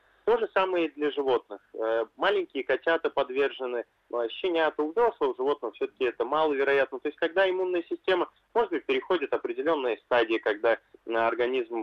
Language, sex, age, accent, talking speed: Russian, male, 20-39, native, 140 wpm